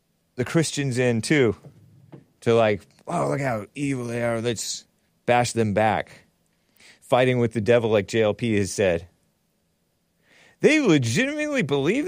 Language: English